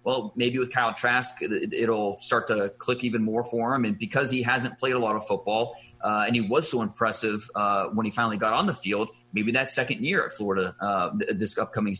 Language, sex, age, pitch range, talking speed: English, male, 30-49, 105-125 Hz, 225 wpm